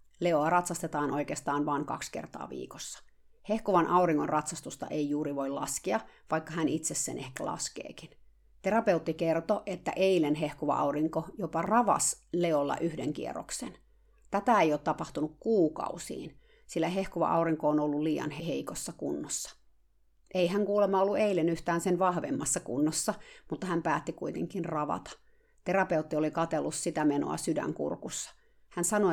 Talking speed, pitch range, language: 135 wpm, 150-195 Hz, Finnish